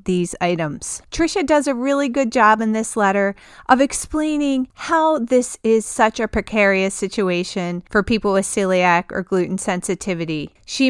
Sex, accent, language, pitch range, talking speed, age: female, American, English, 190-250 Hz, 155 wpm, 40-59